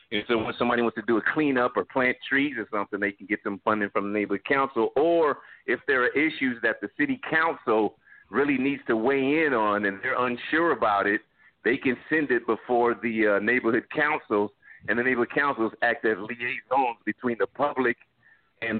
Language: English